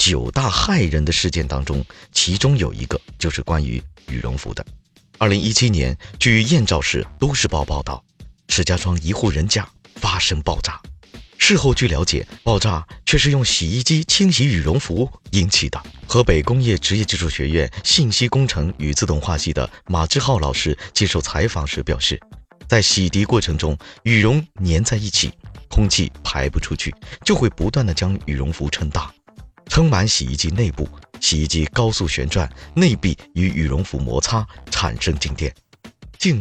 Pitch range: 75-110 Hz